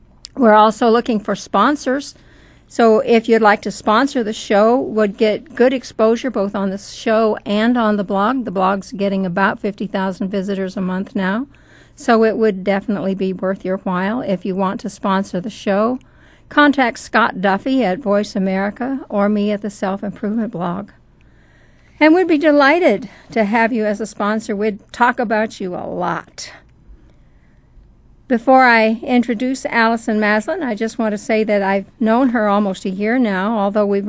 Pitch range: 200-235 Hz